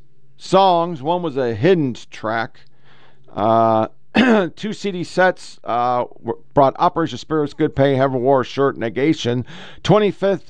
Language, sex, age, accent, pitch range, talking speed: English, male, 50-69, American, 125-165 Hz, 120 wpm